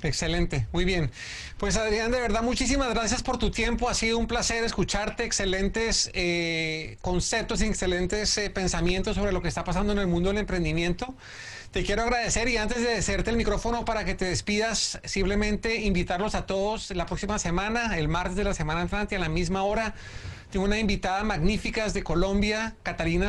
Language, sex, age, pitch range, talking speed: Spanish, male, 30-49, 165-205 Hz, 185 wpm